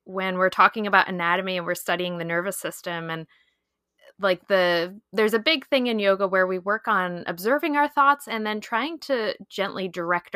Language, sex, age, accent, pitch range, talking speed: English, female, 20-39, American, 175-215 Hz, 190 wpm